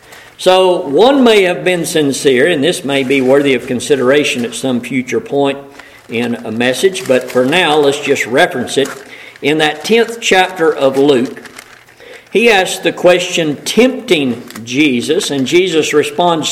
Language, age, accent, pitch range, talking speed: English, 50-69, American, 135-175 Hz, 155 wpm